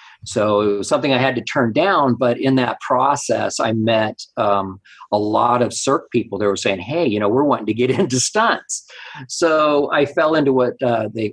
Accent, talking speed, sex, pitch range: American, 205 wpm, male, 100-120 Hz